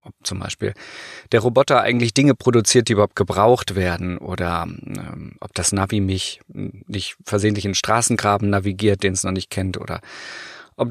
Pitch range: 95-120 Hz